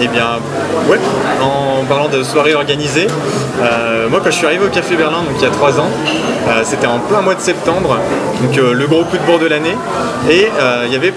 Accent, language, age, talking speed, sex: French, French, 20-39, 235 wpm, male